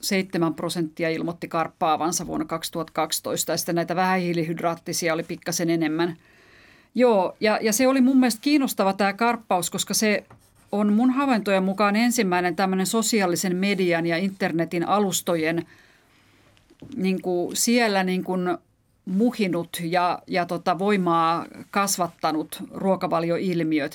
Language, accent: Finnish, native